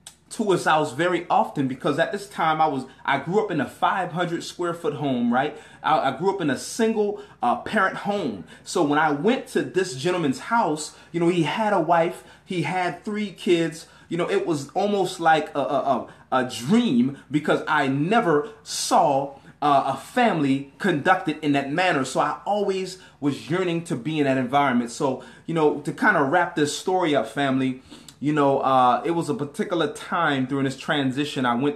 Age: 30-49